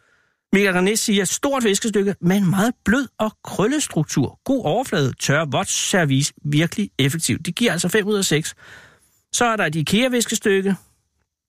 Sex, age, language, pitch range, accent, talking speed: male, 60-79, Danish, 150-210 Hz, native, 150 wpm